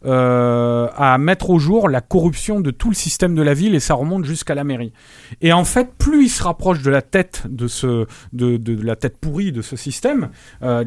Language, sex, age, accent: French, male, 40-59, French